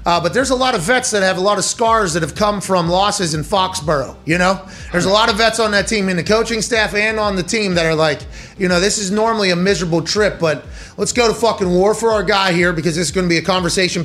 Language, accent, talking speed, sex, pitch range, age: English, American, 285 wpm, male, 160-205 Hz, 30-49